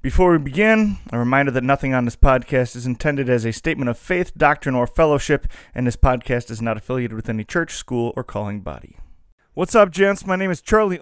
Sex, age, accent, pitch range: male, 30-49, American, 135-170 Hz